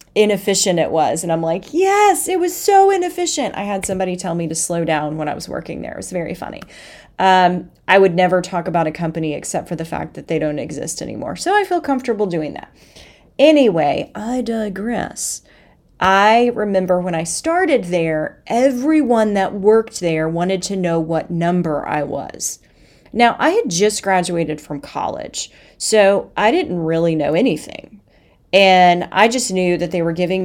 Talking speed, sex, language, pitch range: 180 wpm, female, English, 170-240 Hz